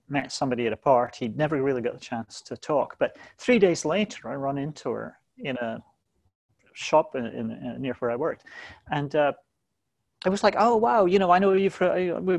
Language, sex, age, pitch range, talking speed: English, male, 30-49, 135-175 Hz, 215 wpm